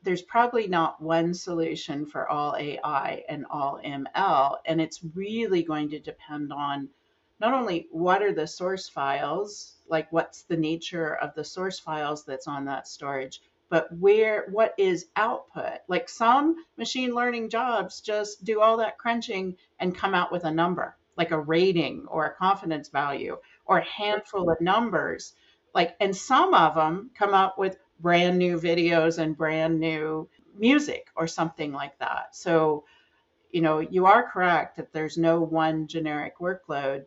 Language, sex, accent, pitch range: English, female, American, 155-195 Hz